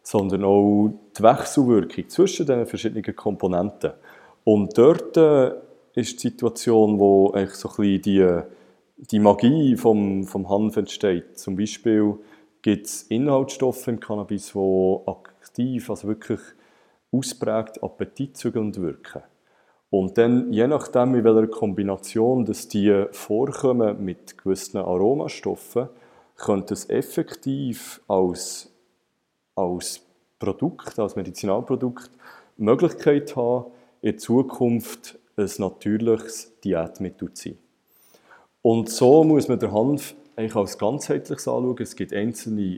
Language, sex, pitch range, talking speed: German, male, 100-120 Hz, 115 wpm